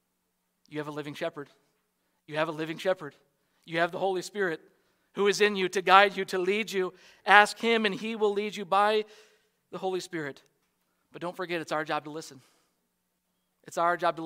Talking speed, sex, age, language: 200 wpm, male, 40-59, English